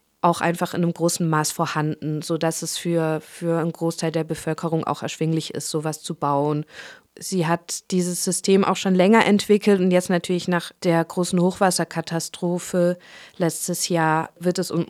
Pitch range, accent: 160-180 Hz, German